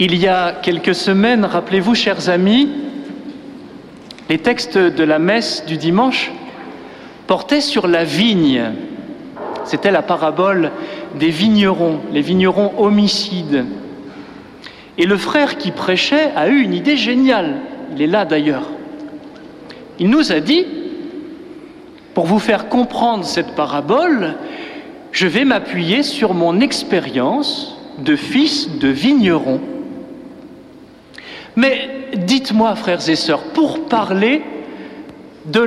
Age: 50-69